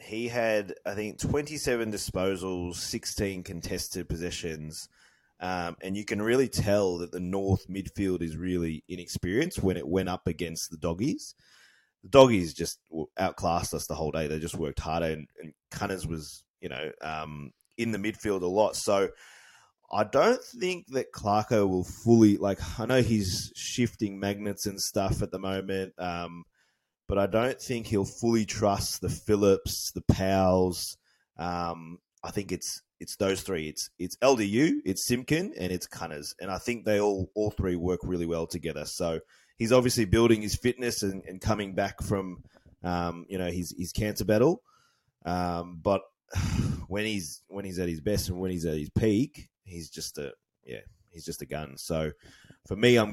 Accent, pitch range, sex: Australian, 85-105 Hz, male